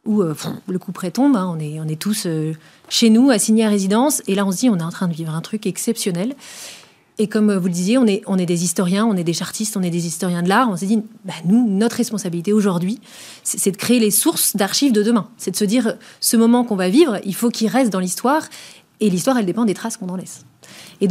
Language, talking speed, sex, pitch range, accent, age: French, 275 wpm, female, 190-230 Hz, French, 30-49